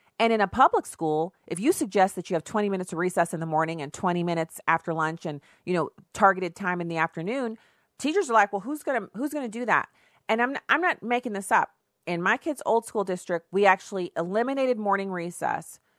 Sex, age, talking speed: female, 40-59, 235 wpm